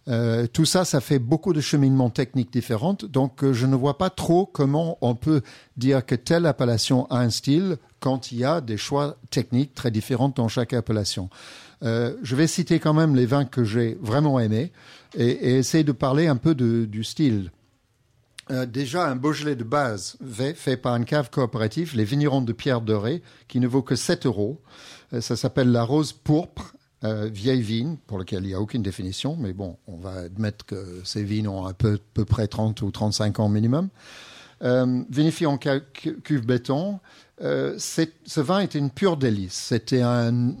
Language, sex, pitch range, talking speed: French, male, 110-140 Hz, 200 wpm